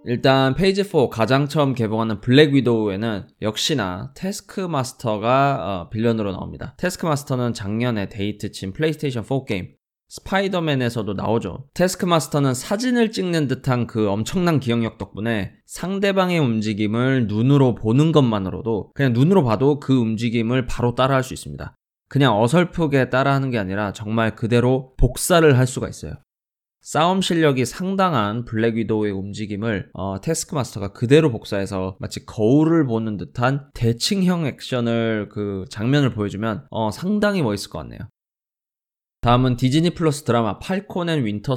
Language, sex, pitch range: Korean, male, 105-145 Hz